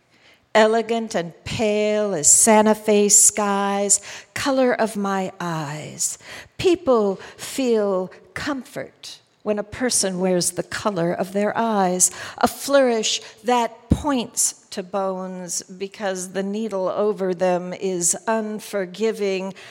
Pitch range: 200-245 Hz